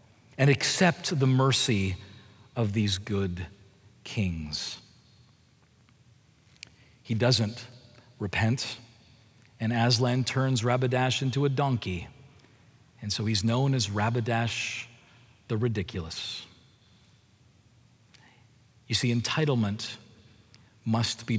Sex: male